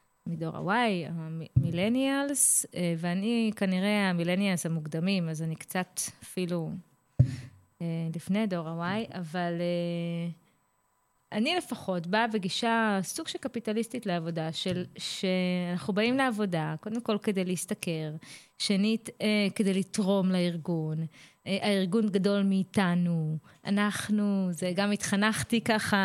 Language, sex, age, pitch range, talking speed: Hebrew, female, 20-39, 175-215 Hz, 100 wpm